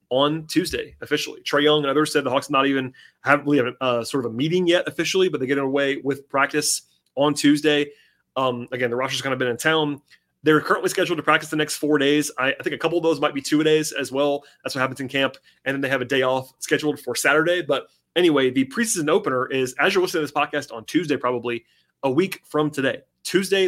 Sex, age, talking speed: male, 30-49, 245 wpm